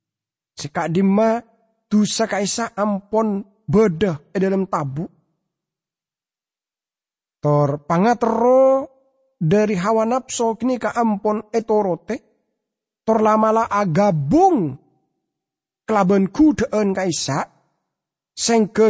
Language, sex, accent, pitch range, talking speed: English, male, Indonesian, 155-245 Hz, 70 wpm